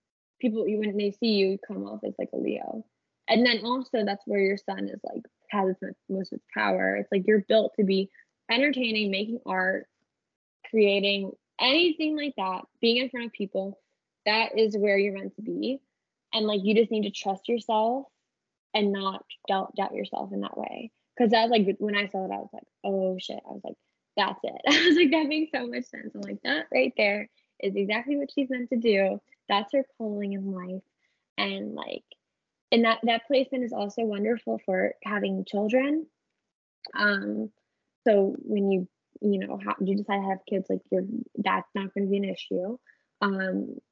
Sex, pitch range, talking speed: female, 195-235 Hz, 200 wpm